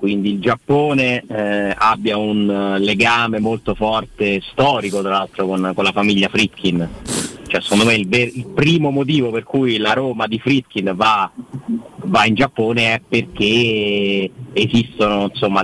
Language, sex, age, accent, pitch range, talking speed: Italian, male, 40-59, native, 100-125 Hz, 155 wpm